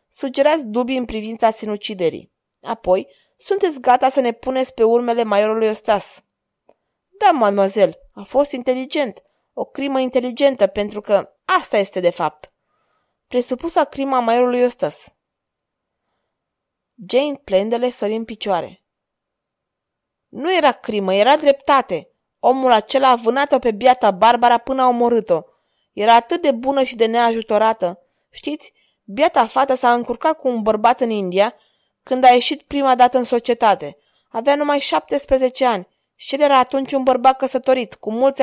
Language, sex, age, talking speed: Romanian, female, 20-39, 140 wpm